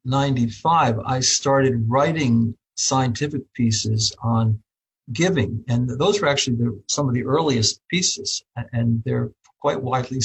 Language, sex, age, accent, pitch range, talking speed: English, male, 60-79, American, 115-135 Hz, 130 wpm